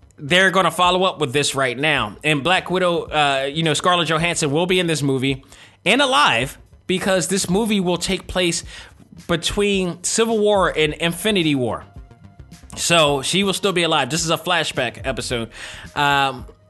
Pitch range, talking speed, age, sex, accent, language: 130-165 Hz, 170 wpm, 20-39, male, American, English